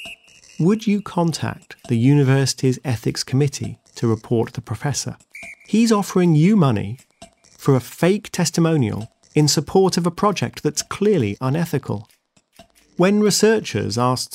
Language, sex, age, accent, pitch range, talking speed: English, male, 40-59, British, 115-165 Hz, 125 wpm